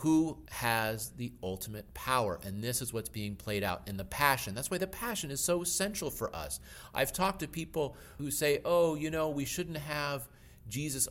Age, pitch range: 40-59, 120-170 Hz